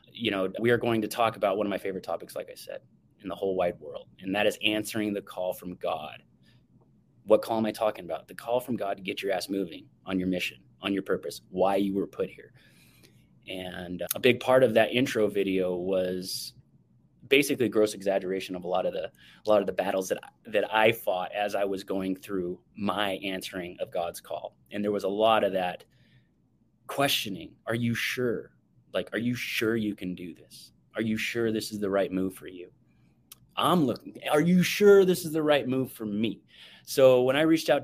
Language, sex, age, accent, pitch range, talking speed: English, male, 30-49, American, 95-120 Hz, 220 wpm